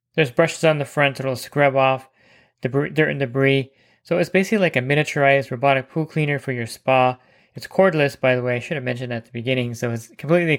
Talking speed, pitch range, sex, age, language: 220 wpm, 130-145 Hz, male, 20-39, English